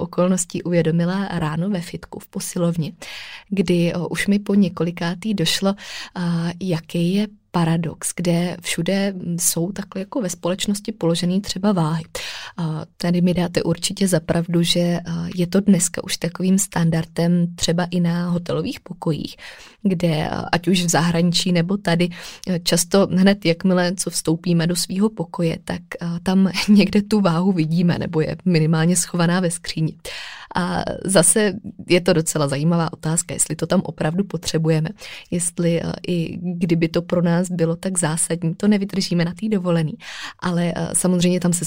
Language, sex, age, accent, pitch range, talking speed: Czech, female, 20-39, native, 165-190 Hz, 145 wpm